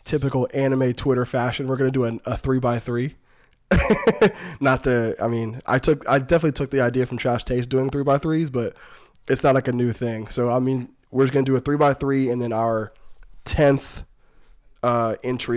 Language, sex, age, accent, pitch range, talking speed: English, male, 20-39, American, 115-135 Hz, 215 wpm